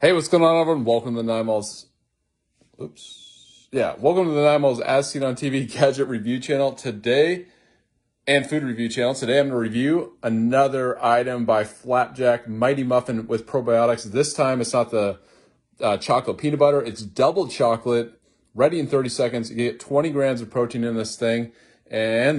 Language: English